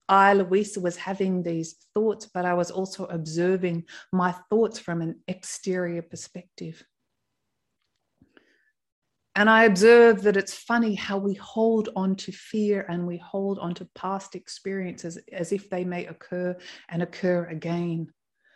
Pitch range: 170-200 Hz